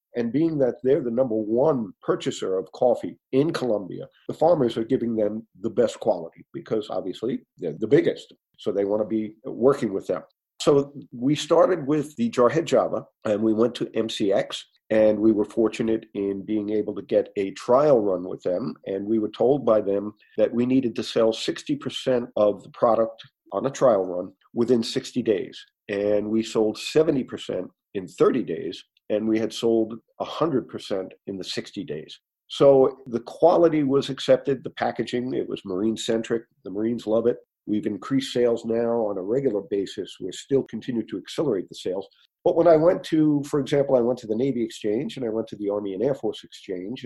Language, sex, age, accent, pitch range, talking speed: English, male, 50-69, American, 110-130 Hz, 190 wpm